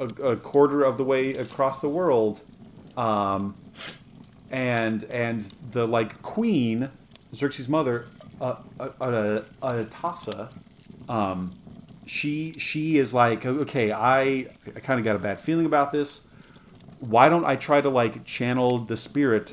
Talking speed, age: 145 wpm, 30-49